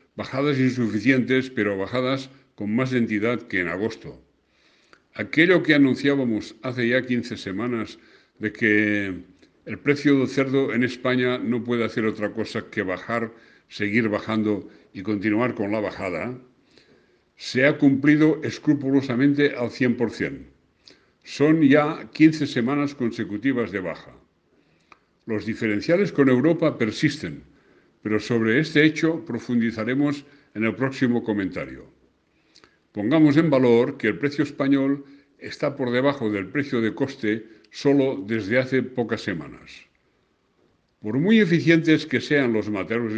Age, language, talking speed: 60-79, Spanish, 130 wpm